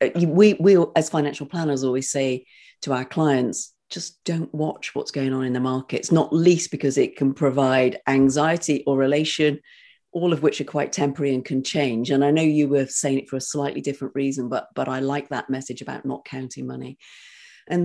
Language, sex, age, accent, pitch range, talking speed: English, female, 40-59, British, 135-155 Hz, 200 wpm